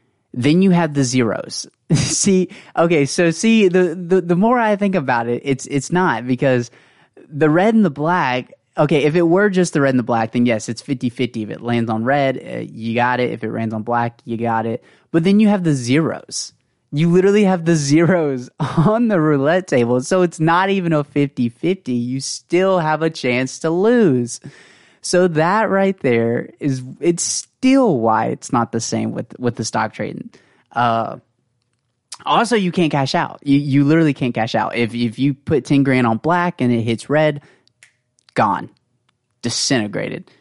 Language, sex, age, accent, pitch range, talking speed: English, male, 20-39, American, 120-170 Hz, 190 wpm